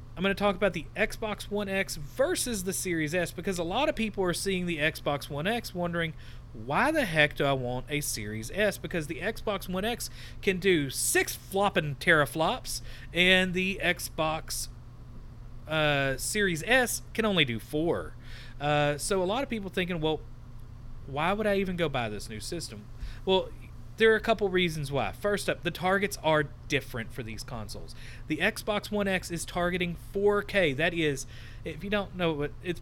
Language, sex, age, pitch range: English, male, 40-59, 130-190 Hz